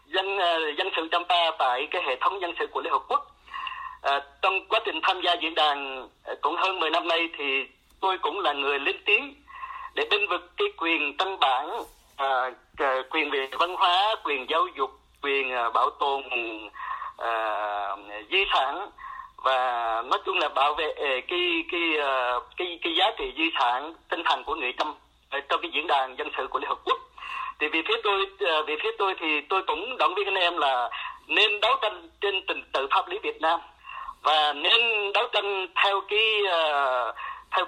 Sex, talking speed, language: male, 190 wpm, Vietnamese